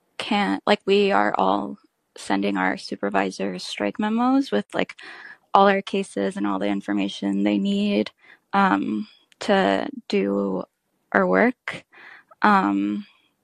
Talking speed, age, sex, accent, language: 120 wpm, 10-29, female, American, English